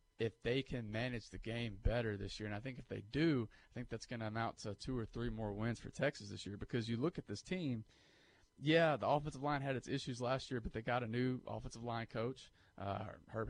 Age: 30-49